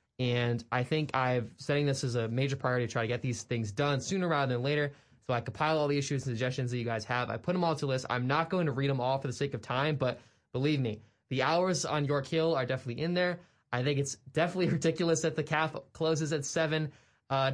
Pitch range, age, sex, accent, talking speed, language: 120-150 Hz, 20-39, male, American, 255 wpm, English